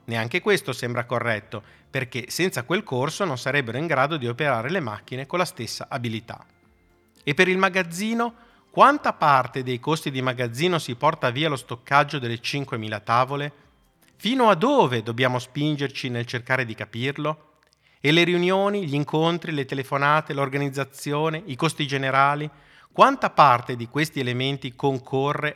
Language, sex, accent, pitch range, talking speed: Italian, male, native, 120-165 Hz, 150 wpm